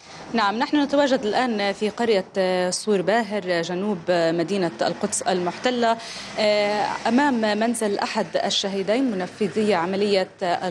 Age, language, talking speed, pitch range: 30-49, Arabic, 100 wpm, 185-235 Hz